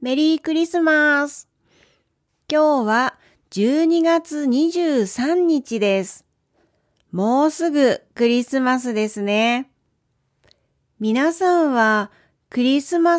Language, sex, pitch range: Japanese, female, 200-300 Hz